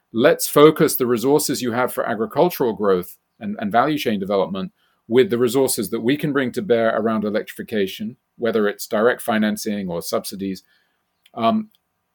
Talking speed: 160 wpm